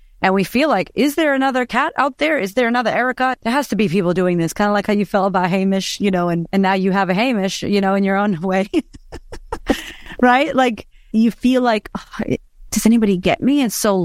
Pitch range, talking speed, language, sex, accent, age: 170-205 Hz, 245 wpm, English, female, American, 30-49